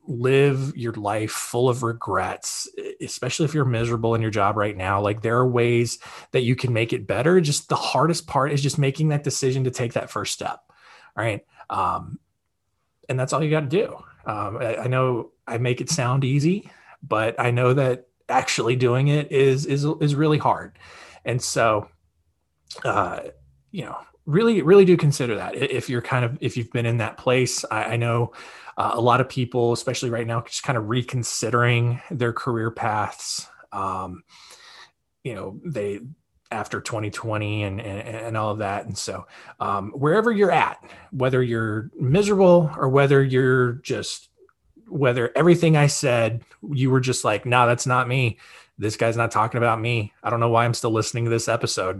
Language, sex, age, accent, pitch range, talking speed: English, male, 20-39, American, 110-135 Hz, 185 wpm